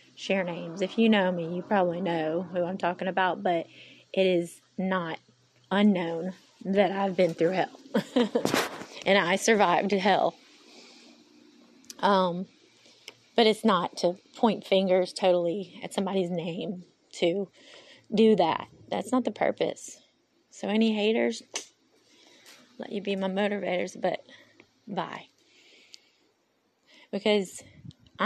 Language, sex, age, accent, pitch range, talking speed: English, female, 20-39, American, 180-250 Hz, 120 wpm